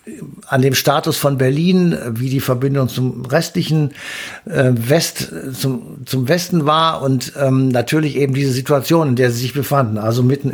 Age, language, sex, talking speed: 60-79, German, male, 165 wpm